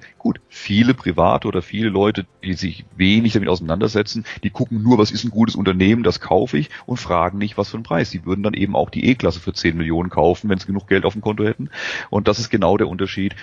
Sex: male